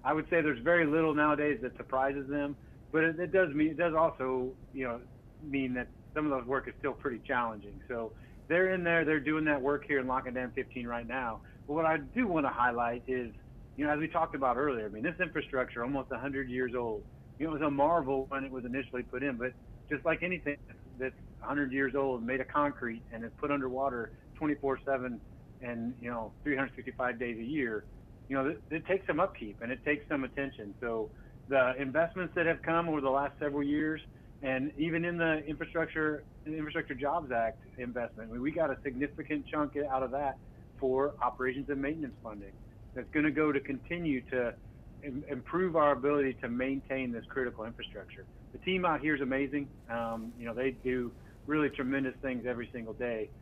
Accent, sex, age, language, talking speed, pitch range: American, male, 30-49, English, 200 wpm, 120-150 Hz